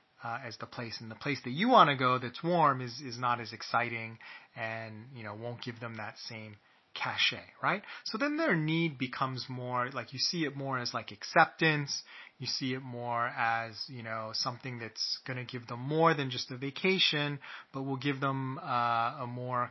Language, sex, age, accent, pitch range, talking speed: English, male, 30-49, American, 120-165 Hz, 205 wpm